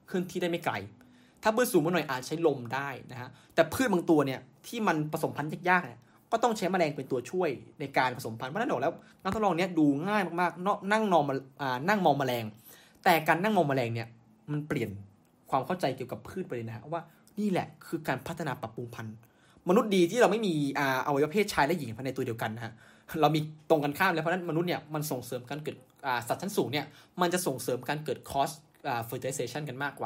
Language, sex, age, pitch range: Thai, male, 20-39, 130-180 Hz